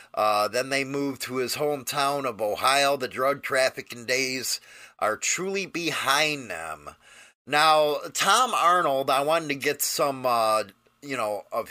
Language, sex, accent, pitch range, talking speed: English, male, American, 125-155 Hz, 150 wpm